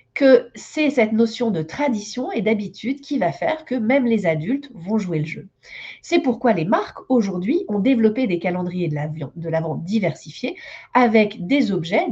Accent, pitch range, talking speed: French, 185-265 Hz, 180 wpm